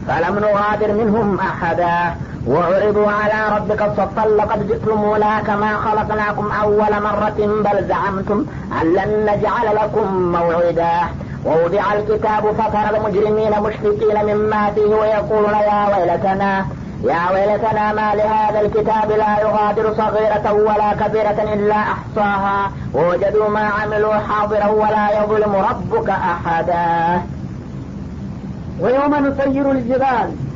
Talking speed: 115 wpm